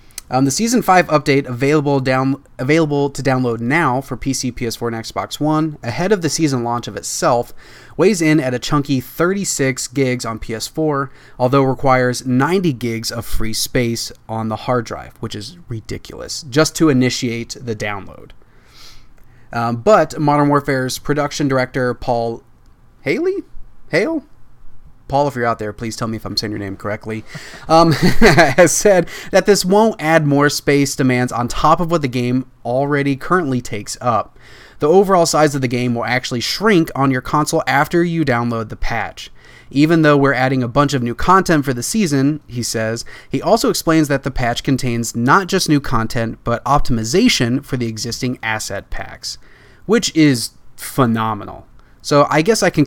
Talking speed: 170 wpm